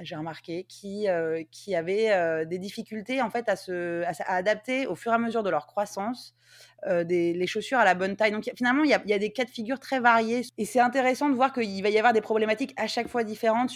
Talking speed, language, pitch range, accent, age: 270 wpm, French, 180-235 Hz, French, 20-39